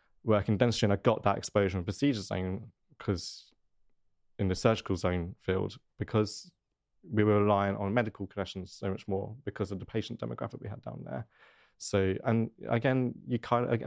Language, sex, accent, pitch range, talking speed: English, male, British, 95-110 Hz, 175 wpm